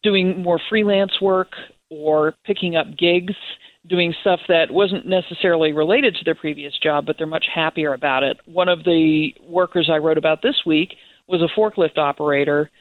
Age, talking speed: 50-69, 175 wpm